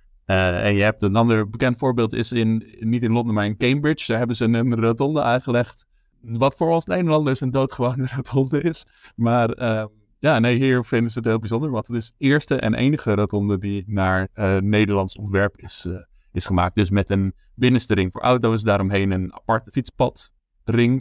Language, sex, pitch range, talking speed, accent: Dutch, male, 100-125 Hz, 195 wpm, Dutch